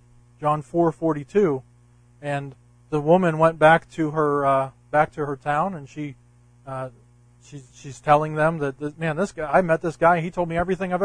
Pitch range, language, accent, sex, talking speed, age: 120-155 Hz, English, American, male, 190 wpm, 40-59